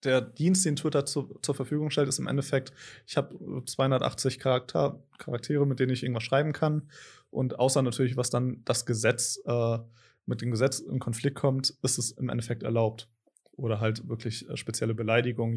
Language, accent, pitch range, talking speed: German, German, 120-140 Hz, 175 wpm